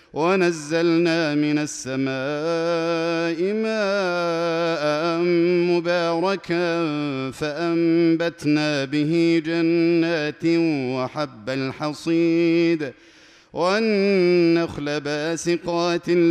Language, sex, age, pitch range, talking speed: Arabic, male, 40-59, 145-170 Hz, 45 wpm